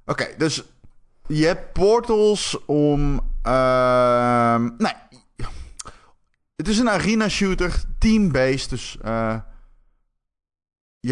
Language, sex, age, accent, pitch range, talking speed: Dutch, male, 20-39, Dutch, 110-150 Hz, 90 wpm